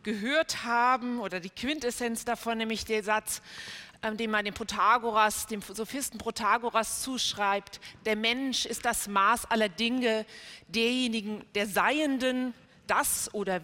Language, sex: German, female